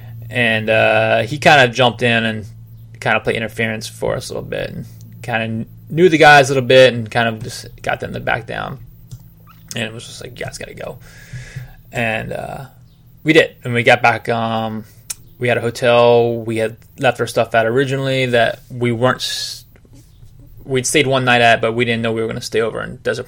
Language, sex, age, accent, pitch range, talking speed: English, male, 20-39, American, 115-135 Hz, 220 wpm